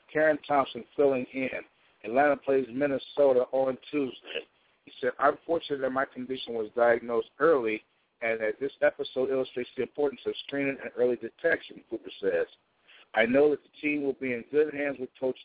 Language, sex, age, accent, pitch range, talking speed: English, male, 50-69, American, 125-145 Hz, 175 wpm